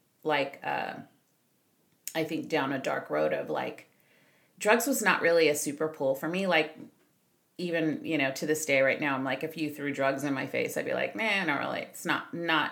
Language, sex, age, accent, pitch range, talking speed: English, female, 30-49, American, 150-180 Hz, 215 wpm